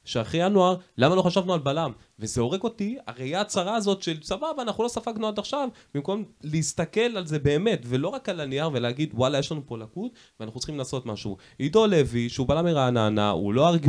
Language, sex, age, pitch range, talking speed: Hebrew, male, 20-39, 105-145 Hz, 205 wpm